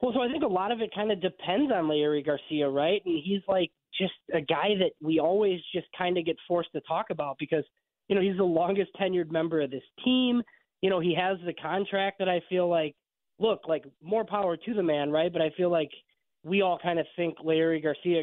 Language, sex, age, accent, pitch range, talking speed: English, male, 20-39, American, 150-185 Hz, 235 wpm